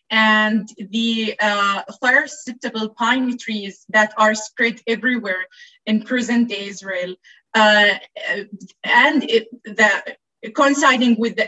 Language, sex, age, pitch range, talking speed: English, female, 20-39, 205-235 Hz, 110 wpm